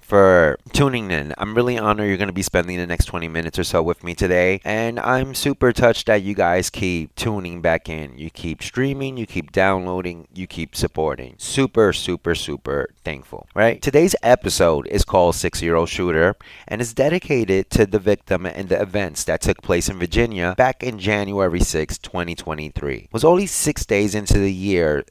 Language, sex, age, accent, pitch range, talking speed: English, male, 30-49, American, 85-110 Hz, 190 wpm